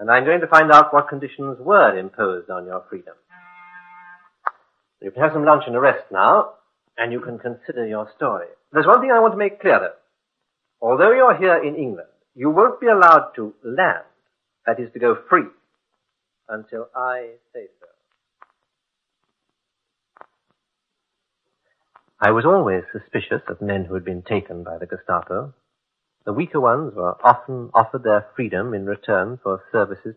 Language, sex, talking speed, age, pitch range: English, male, 165 wpm, 60-79, 100-155 Hz